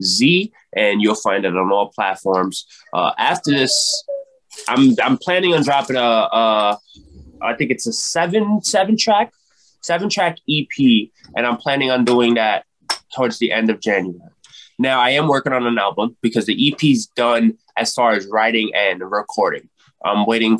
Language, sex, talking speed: English, male, 170 wpm